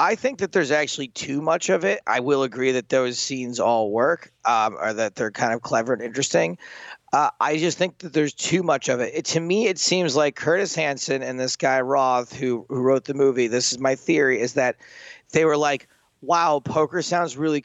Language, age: English, 30-49